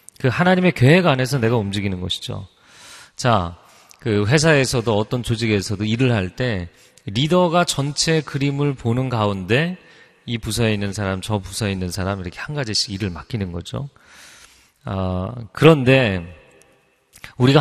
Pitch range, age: 105-145 Hz, 40-59